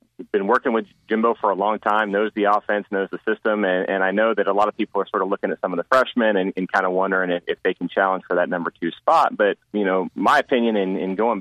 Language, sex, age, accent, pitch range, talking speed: English, male, 30-49, American, 85-100 Hz, 285 wpm